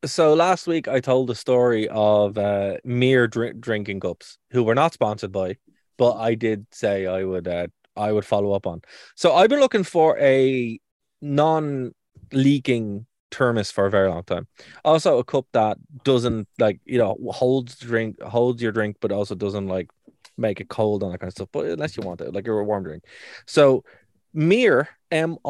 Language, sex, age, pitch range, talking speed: English, male, 20-39, 100-125 Hz, 195 wpm